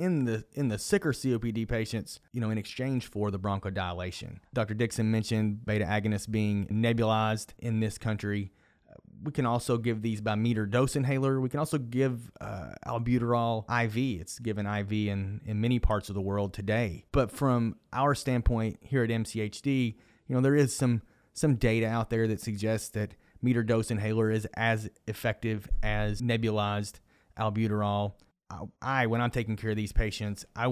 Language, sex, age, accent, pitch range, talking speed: English, male, 30-49, American, 105-120 Hz, 170 wpm